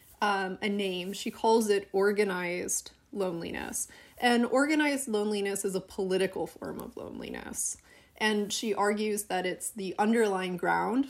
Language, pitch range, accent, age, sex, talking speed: English, 195-240 Hz, American, 30-49, female, 135 wpm